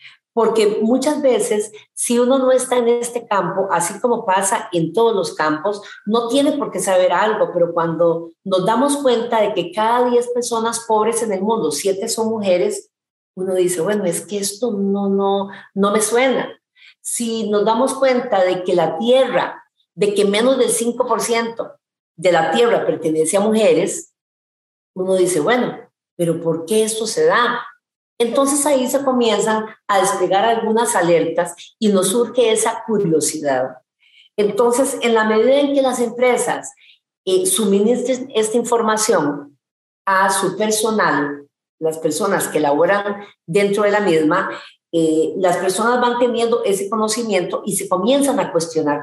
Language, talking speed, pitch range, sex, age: Spanish, 155 wpm, 185-240 Hz, female, 40-59